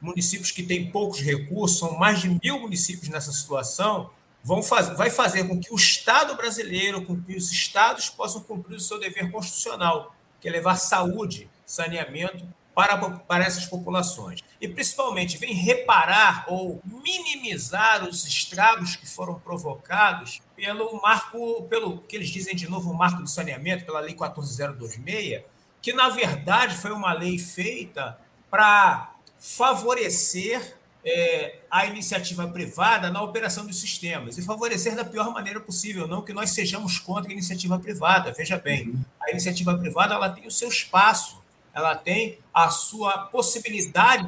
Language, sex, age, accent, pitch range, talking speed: Portuguese, male, 50-69, Brazilian, 175-220 Hz, 145 wpm